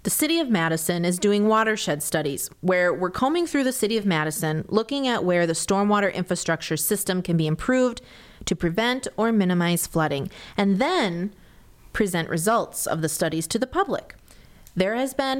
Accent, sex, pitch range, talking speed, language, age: American, female, 170-230 Hz, 170 wpm, English, 30-49